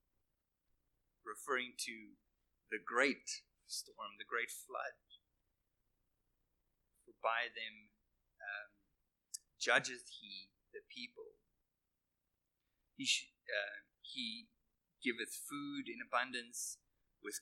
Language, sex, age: English, male, 30-49